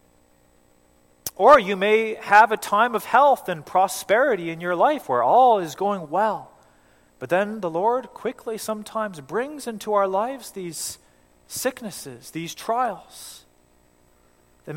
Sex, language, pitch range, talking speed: male, English, 155-250 Hz, 135 wpm